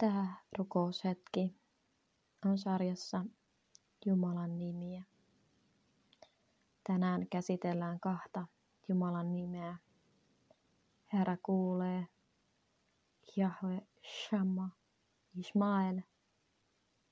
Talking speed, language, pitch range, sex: 55 wpm, Finnish, 180-195 Hz, female